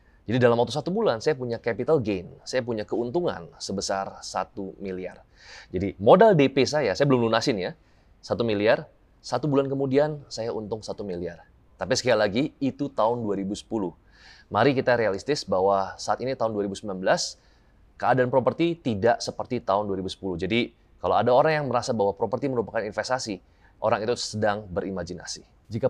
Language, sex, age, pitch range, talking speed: Indonesian, male, 20-39, 95-125 Hz, 155 wpm